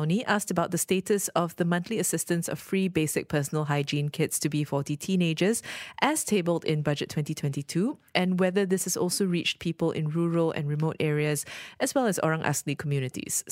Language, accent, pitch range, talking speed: English, Malaysian, 150-185 Hz, 180 wpm